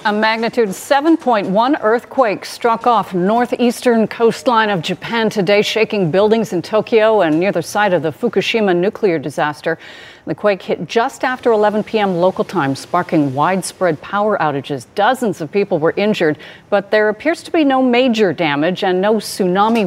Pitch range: 180-245 Hz